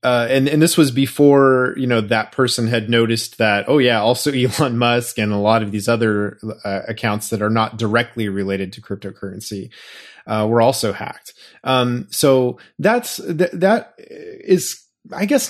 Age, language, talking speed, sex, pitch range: 20-39, English, 170 wpm, male, 110-135 Hz